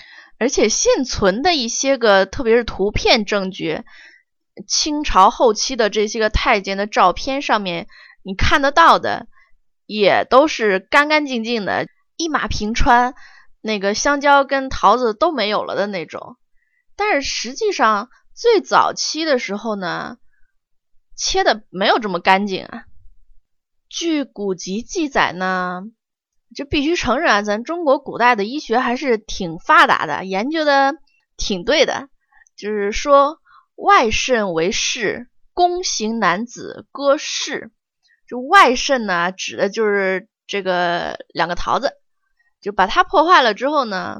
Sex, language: female, Chinese